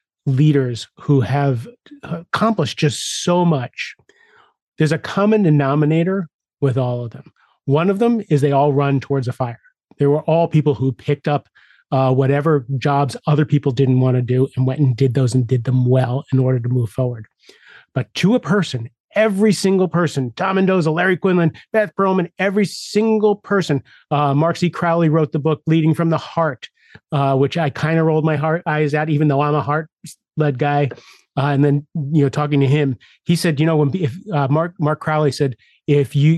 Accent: American